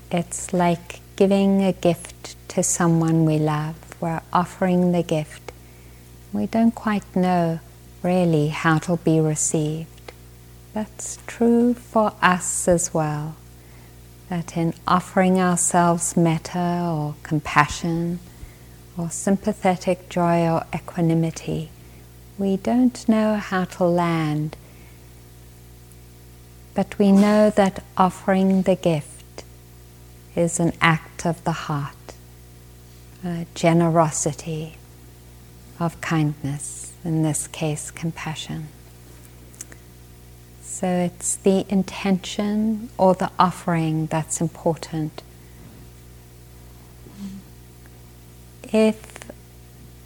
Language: English